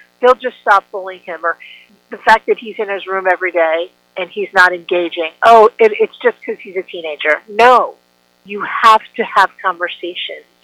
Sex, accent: female, American